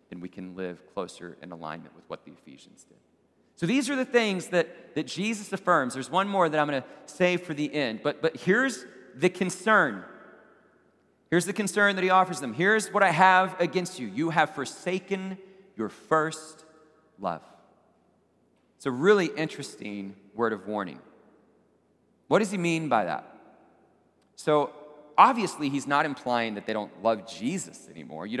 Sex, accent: male, American